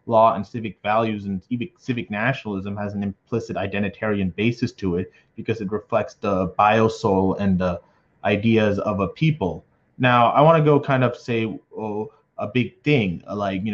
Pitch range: 95-115 Hz